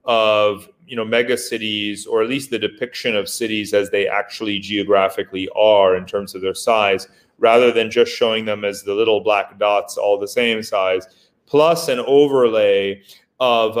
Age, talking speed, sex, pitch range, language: 30-49, 165 wpm, male, 105-150 Hz, Italian